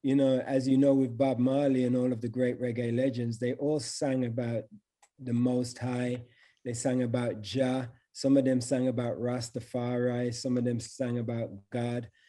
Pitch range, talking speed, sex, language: 120-135 Hz, 185 wpm, male, English